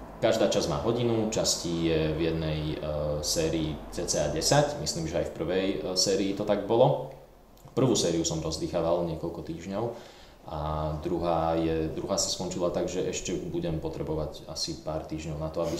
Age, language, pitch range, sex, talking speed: 20-39, Slovak, 80-90 Hz, male, 165 wpm